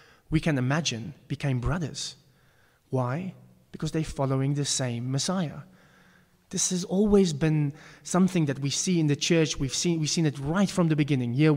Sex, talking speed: male, 170 wpm